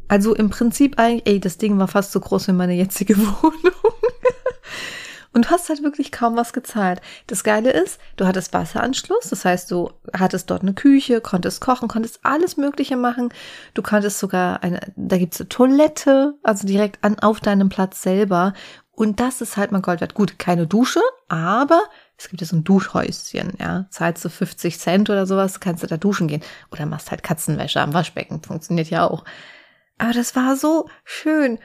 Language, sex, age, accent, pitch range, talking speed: German, female, 30-49, German, 185-250 Hz, 190 wpm